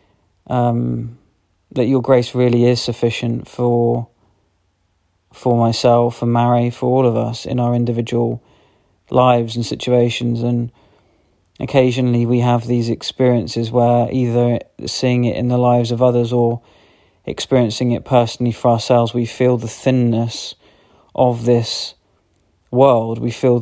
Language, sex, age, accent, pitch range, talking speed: English, male, 40-59, British, 115-125 Hz, 130 wpm